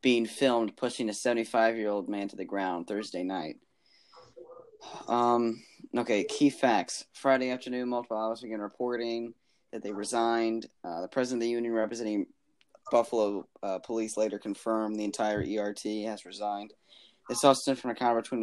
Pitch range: 105-120 Hz